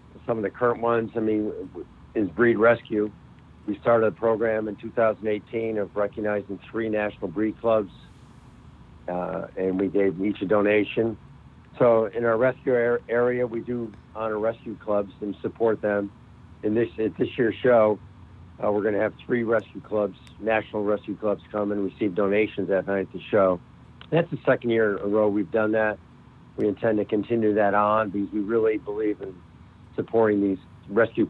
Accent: American